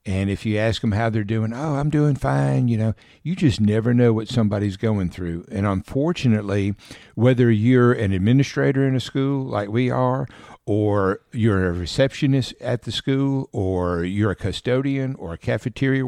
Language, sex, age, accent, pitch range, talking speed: English, male, 60-79, American, 95-125 Hz, 180 wpm